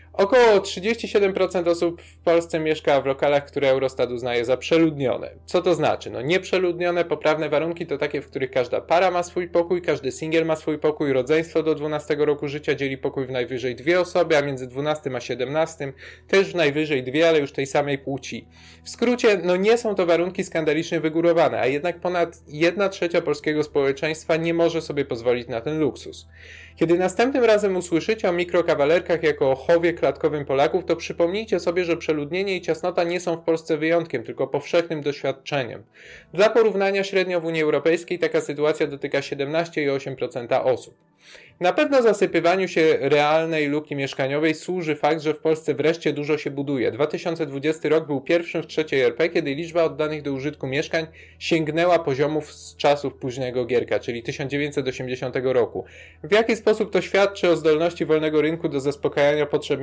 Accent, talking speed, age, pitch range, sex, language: native, 170 wpm, 20-39, 145-175 Hz, male, Polish